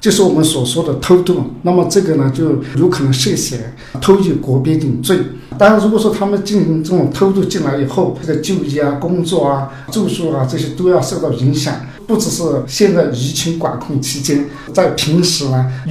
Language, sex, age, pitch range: Chinese, male, 50-69, 140-185 Hz